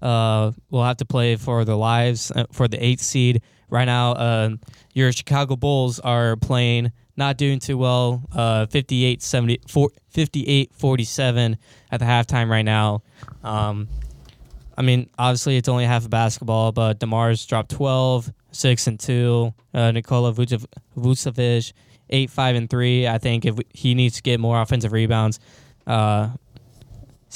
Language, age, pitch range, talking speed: English, 10-29, 115-125 Hz, 155 wpm